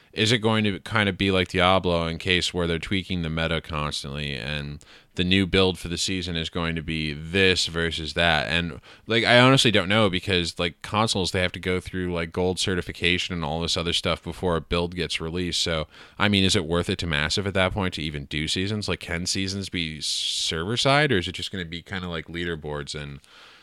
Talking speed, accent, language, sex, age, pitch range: 235 wpm, American, English, male, 20-39, 80-100 Hz